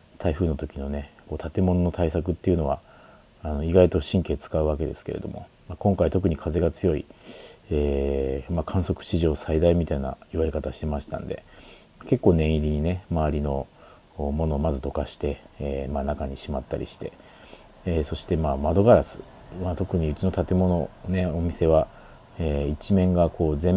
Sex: male